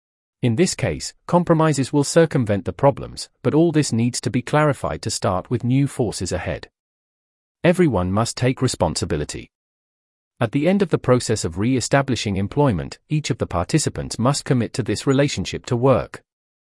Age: 40-59